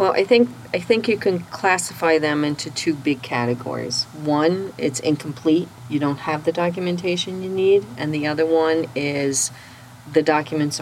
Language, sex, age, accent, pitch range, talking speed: English, female, 40-59, American, 130-155 Hz, 165 wpm